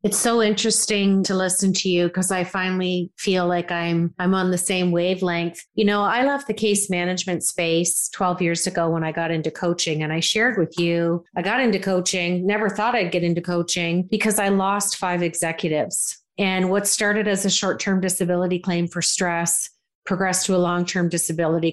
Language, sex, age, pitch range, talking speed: English, female, 40-59, 175-215 Hz, 195 wpm